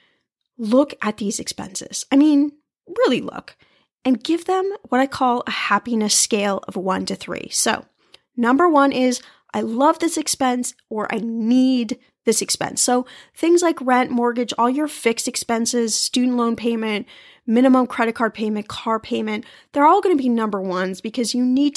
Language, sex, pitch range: English, female, 220-285 Hz